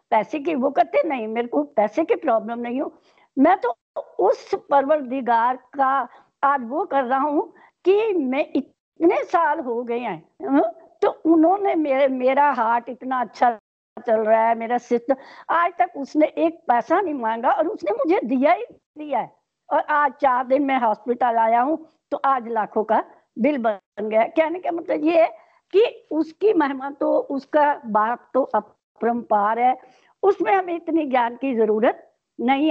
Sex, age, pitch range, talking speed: female, 60-79, 240-320 Hz, 120 wpm